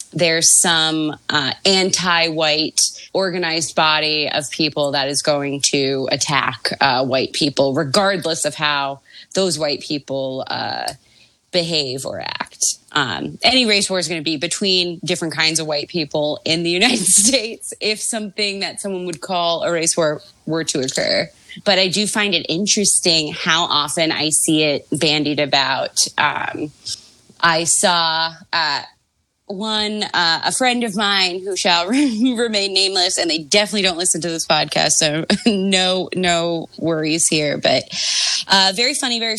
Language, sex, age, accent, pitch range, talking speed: English, female, 30-49, American, 160-210 Hz, 155 wpm